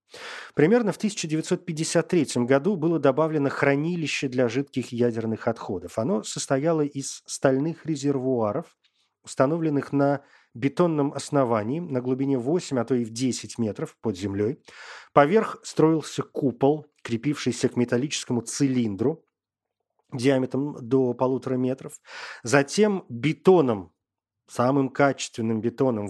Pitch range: 120-155 Hz